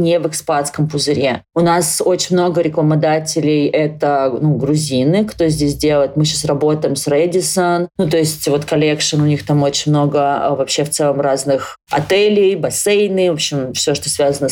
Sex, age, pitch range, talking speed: female, 30-49, 150-170 Hz, 175 wpm